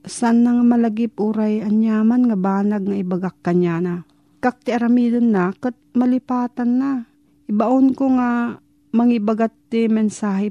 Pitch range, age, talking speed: 175-230 Hz, 40-59, 125 wpm